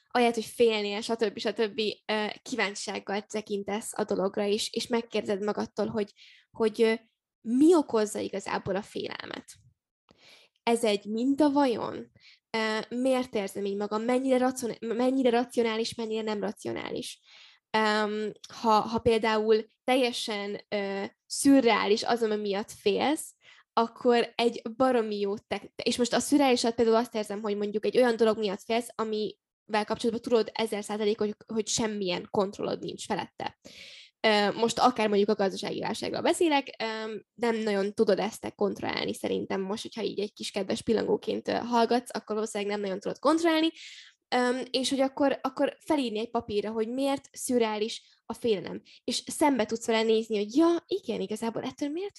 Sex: female